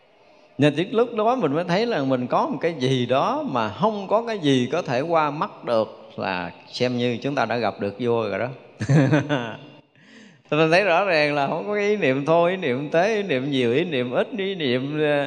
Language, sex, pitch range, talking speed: Vietnamese, male, 120-155 Hz, 220 wpm